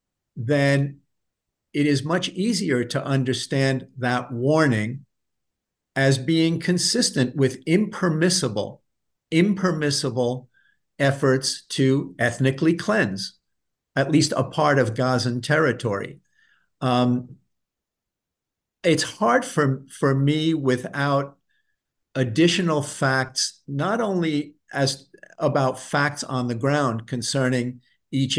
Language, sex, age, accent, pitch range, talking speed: English, male, 50-69, American, 125-155 Hz, 95 wpm